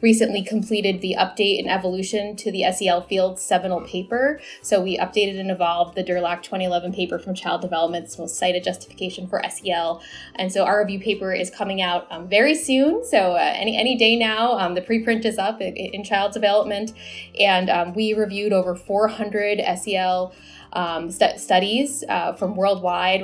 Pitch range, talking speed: 180-215 Hz, 175 wpm